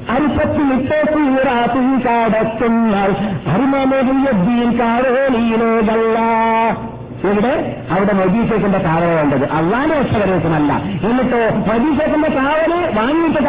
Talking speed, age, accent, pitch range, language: 45 wpm, 50-69, native, 185-245 Hz, Malayalam